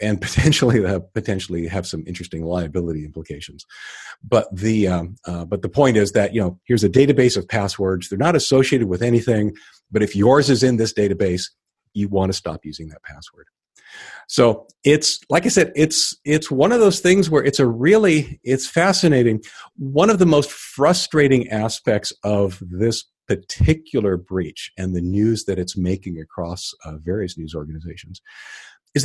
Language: English